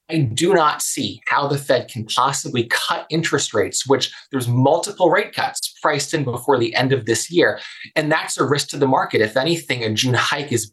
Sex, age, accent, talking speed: male, 20-39, American, 215 wpm